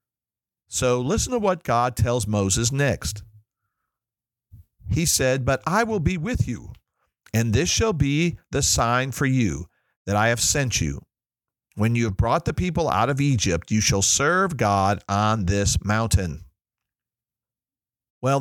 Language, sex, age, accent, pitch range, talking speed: English, male, 50-69, American, 105-140 Hz, 150 wpm